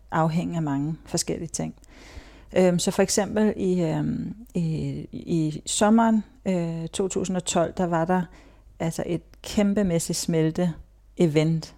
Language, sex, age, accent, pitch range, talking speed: Danish, female, 40-59, native, 155-190 Hz, 120 wpm